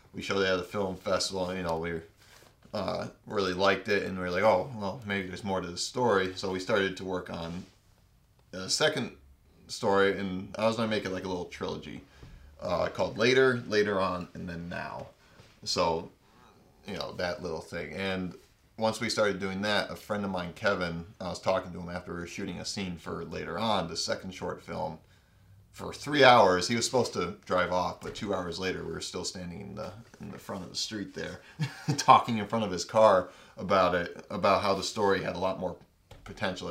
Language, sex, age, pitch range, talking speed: English, male, 30-49, 90-105 Hz, 215 wpm